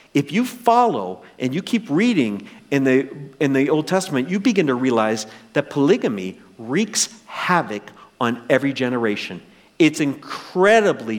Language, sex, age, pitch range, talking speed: English, male, 50-69, 145-245 Hz, 140 wpm